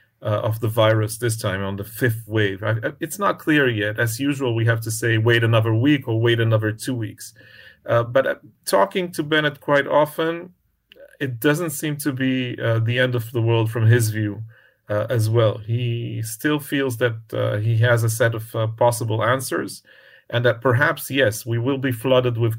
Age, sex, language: 40-59, male, English